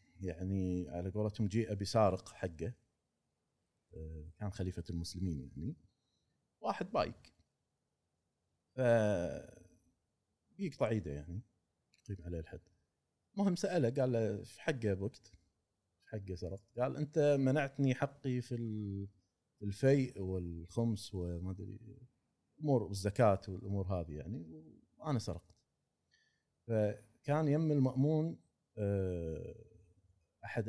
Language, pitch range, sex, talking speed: Arabic, 90-130 Hz, male, 100 wpm